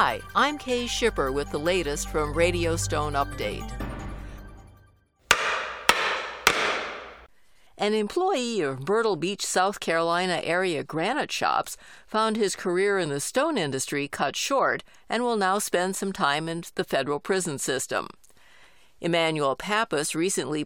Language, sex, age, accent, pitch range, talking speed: English, female, 50-69, American, 140-195 Hz, 130 wpm